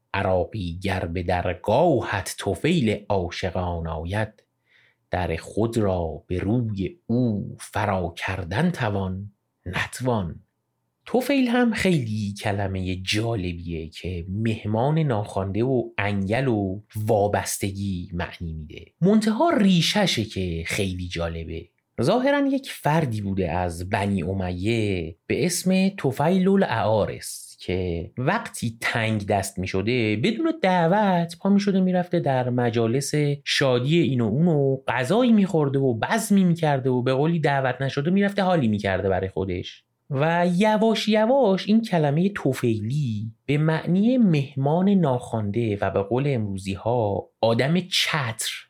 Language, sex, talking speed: Persian, male, 120 wpm